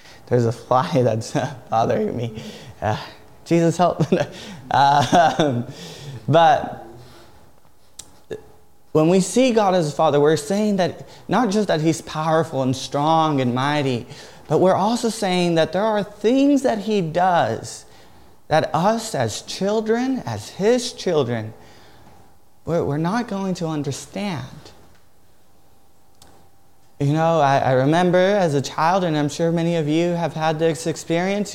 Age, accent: 20-39, American